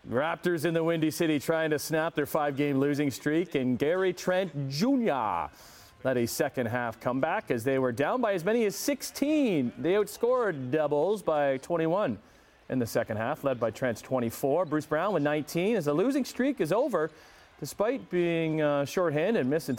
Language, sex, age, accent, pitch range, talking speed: English, male, 40-59, American, 140-180 Hz, 175 wpm